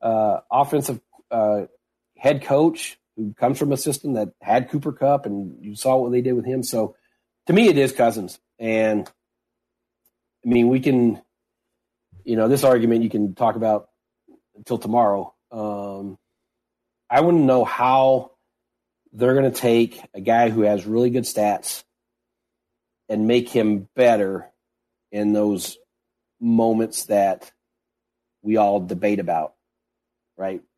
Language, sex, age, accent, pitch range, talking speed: English, male, 40-59, American, 110-120 Hz, 140 wpm